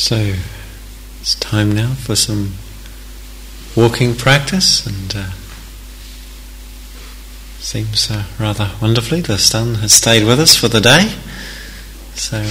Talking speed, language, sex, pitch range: 115 wpm, English, male, 85-120 Hz